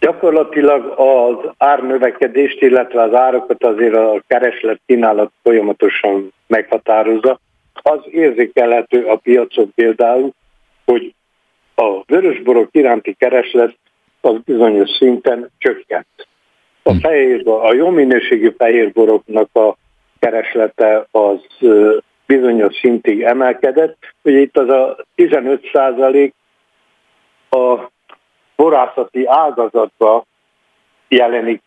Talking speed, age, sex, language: 85 wpm, 60-79, male, Hungarian